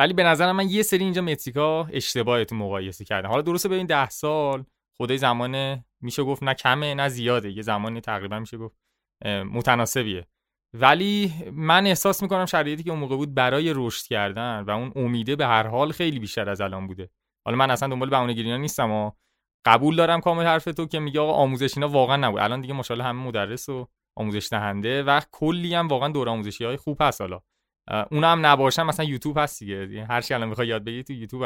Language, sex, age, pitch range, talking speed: Persian, male, 20-39, 110-150 Hz, 190 wpm